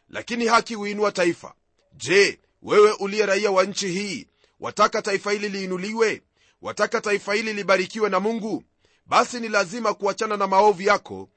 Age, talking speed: 40-59, 155 wpm